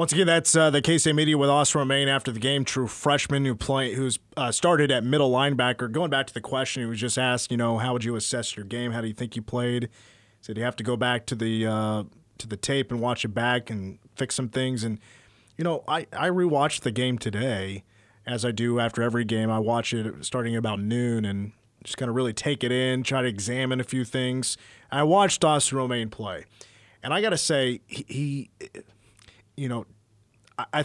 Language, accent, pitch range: English, American, 110-140 Hz